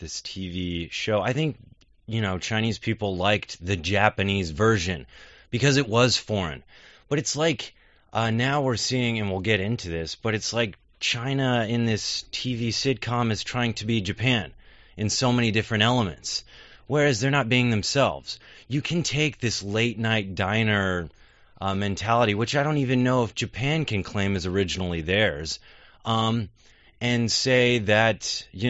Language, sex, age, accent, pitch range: Chinese, male, 30-49, American, 105-130 Hz